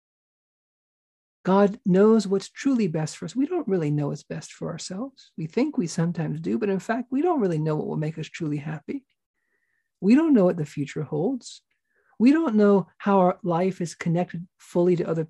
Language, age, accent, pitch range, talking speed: English, 50-69, American, 160-200 Hz, 200 wpm